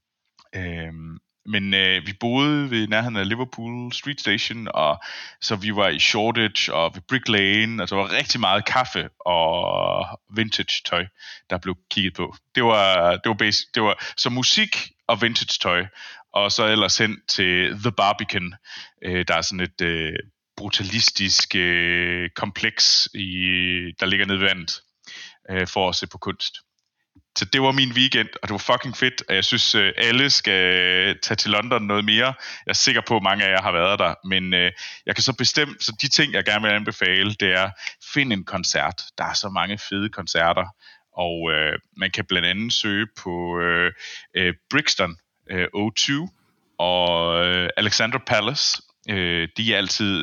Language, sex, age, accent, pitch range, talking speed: Danish, male, 30-49, native, 90-115 Hz, 165 wpm